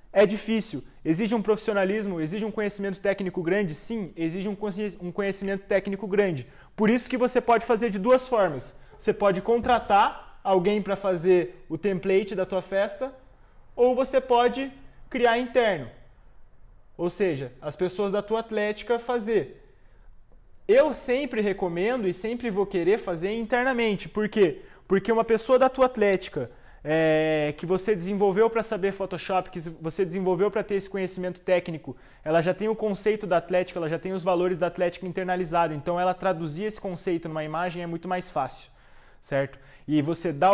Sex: male